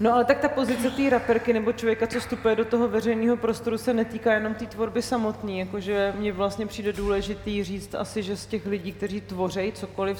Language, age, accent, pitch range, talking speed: Czech, 30-49, native, 190-215 Hz, 205 wpm